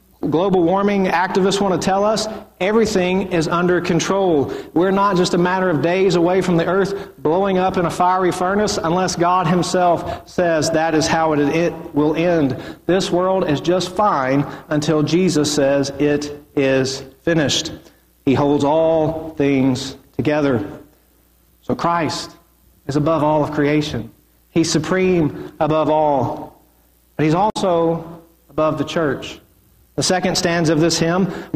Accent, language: American, English